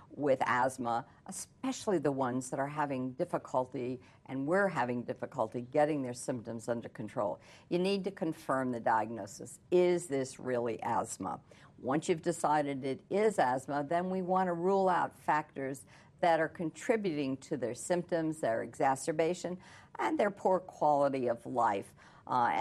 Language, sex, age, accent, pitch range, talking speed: English, female, 60-79, American, 130-175 Hz, 150 wpm